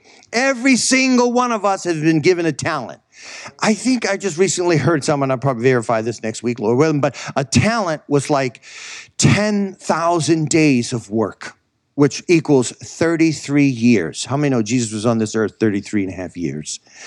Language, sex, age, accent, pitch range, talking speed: English, male, 50-69, American, 125-180 Hz, 180 wpm